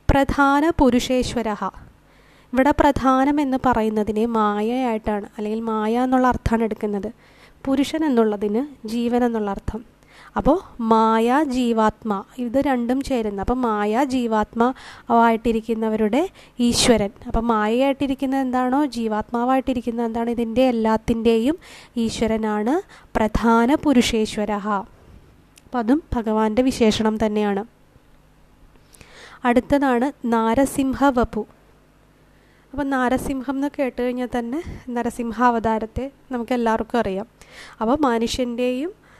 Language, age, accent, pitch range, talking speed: Malayalam, 20-39, native, 220-260 Hz, 80 wpm